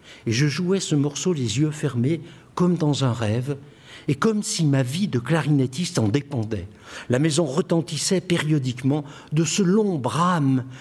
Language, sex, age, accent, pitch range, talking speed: French, male, 60-79, French, 115-150 Hz, 160 wpm